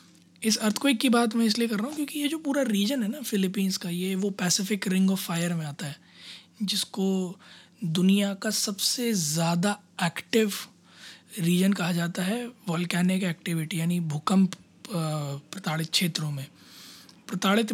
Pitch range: 165-205 Hz